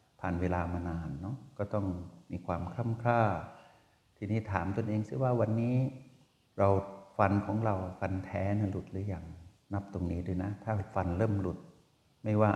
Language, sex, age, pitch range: Thai, male, 60-79, 90-110 Hz